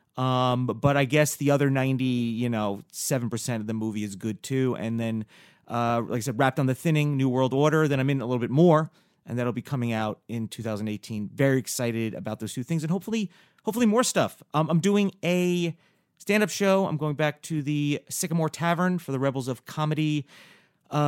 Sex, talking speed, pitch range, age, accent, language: male, 210 wpm, 135-195 Hz, 30-49, American, English